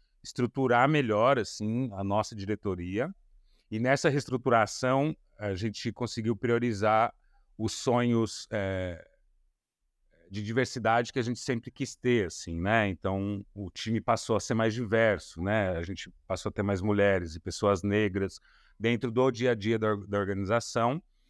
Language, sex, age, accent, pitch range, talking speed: Portuguese, male, 30-49, Brazilian, 105-130 Hz, 145 wpm